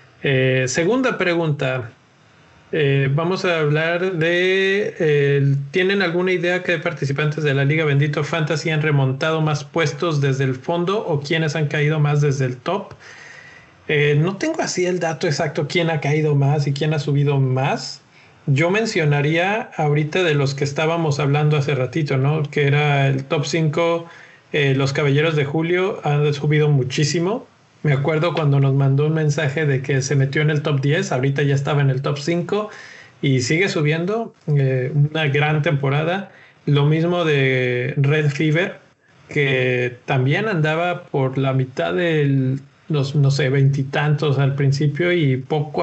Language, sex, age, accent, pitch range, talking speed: Spanish, male, 40-59, Mexican, 140-170 Hz, 160 wpm